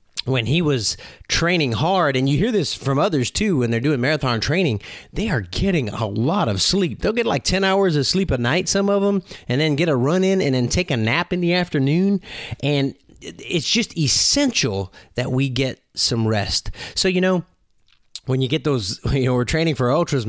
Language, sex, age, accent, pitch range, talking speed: English, male, 30-49, American, 110-155 Hz, 215 wpm